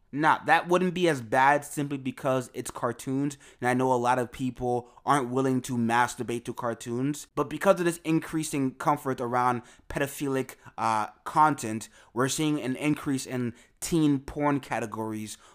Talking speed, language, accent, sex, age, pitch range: 160 wpm, English, American, male, 20-39, 120-145 Hz